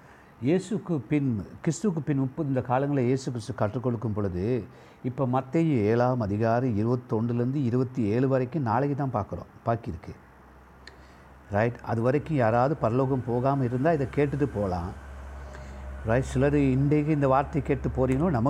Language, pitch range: Tamil, 95-145 Hz